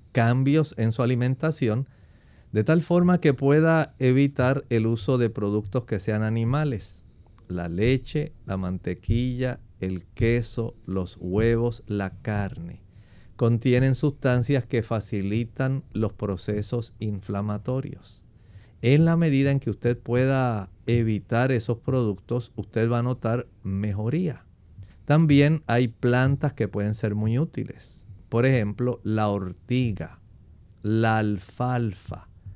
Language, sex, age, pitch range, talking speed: English, male, 50-69, 105-135 Hz, 115 wpm